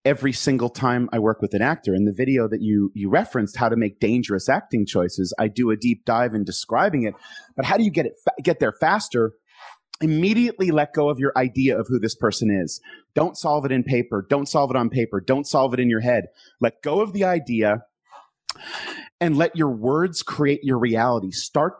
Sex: male